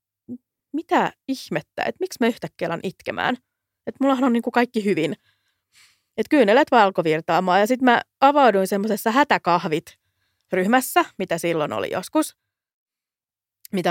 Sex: female